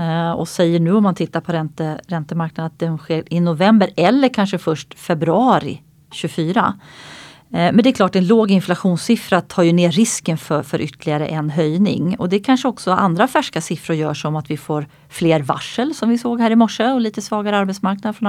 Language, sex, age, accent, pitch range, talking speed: Swedish, female, 30-49, native, 160-220 Hz, 195 wpm